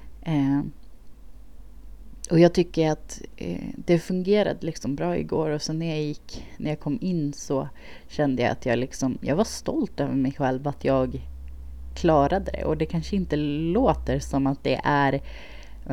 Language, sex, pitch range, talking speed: Swedish, female, 135-155 Hz, 175 wpm